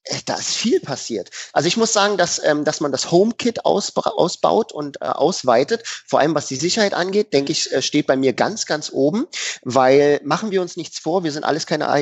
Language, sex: German, male